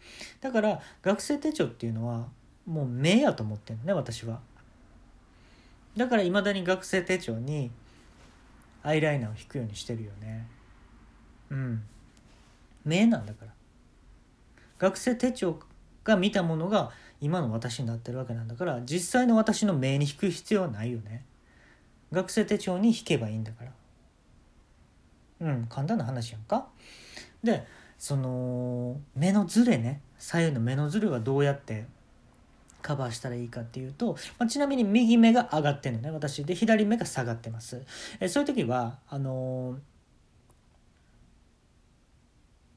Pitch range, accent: 120-190 Hz, native